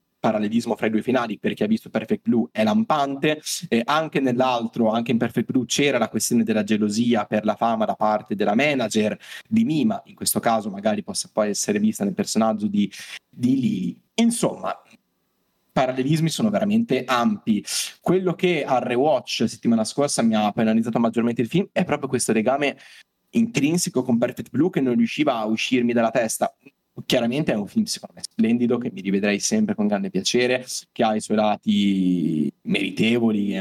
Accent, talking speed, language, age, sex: native, 175 wpm, Italian, 20-39, male